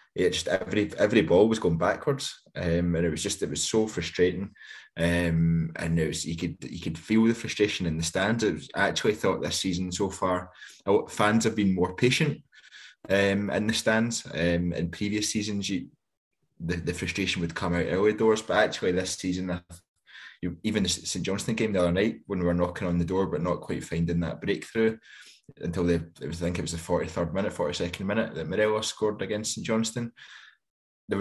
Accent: British